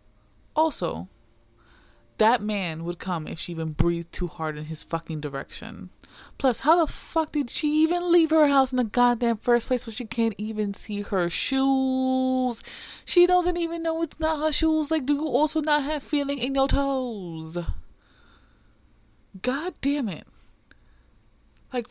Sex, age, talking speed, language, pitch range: female, 20-39, 160 wpm, English, 165-250 Hz